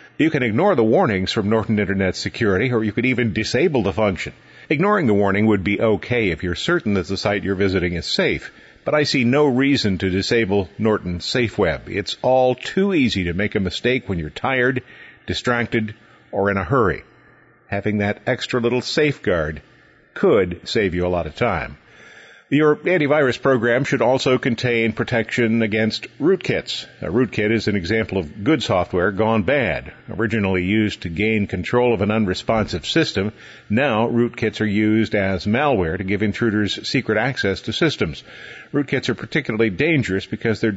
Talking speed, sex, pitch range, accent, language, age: 170 wpm, male, 100-120 Hz, American, English, 50-69